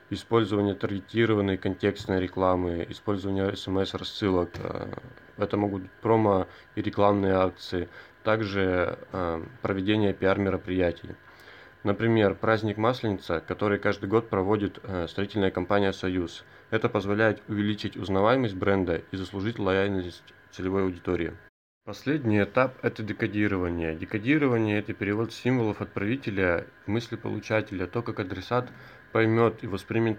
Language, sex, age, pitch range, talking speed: Russian, male, 20-39, 95-115 Hz, 110 wpm